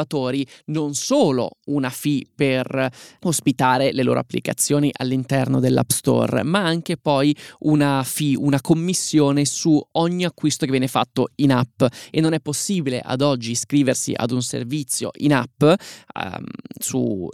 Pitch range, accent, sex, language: 130-150 Hz, native, male, Italian